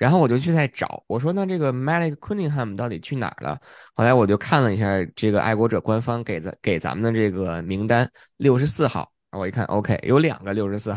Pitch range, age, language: 110-145 Hz, 20-39, Chinese